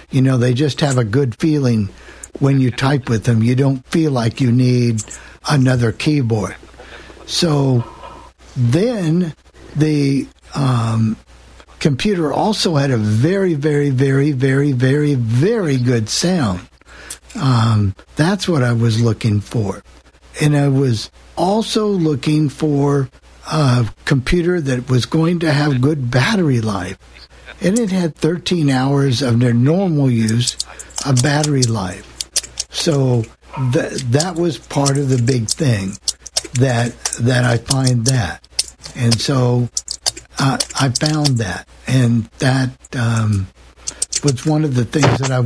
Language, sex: English, male